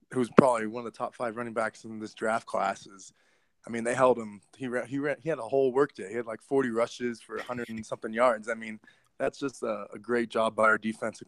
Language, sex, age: English, male, 20-39